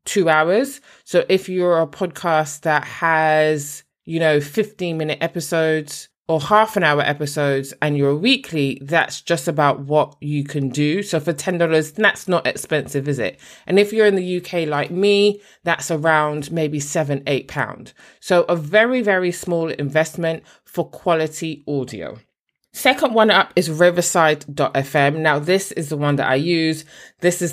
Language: English